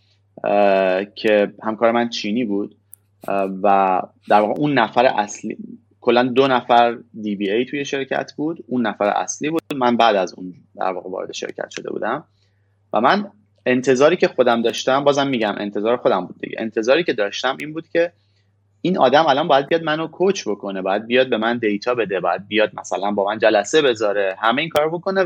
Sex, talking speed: male, 185 wpm